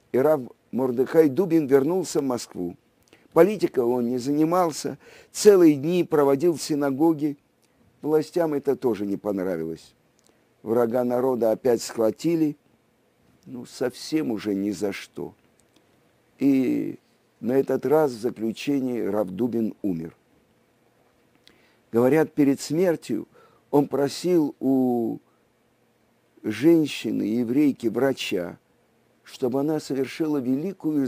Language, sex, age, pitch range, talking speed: Russian, male, 50-69, 120-155 Hz, 100 wpm